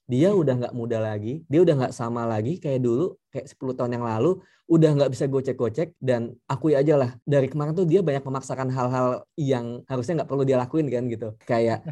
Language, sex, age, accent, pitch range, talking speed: Indonesian, male, 20-39, native, 130-170 Hz, 205 wpm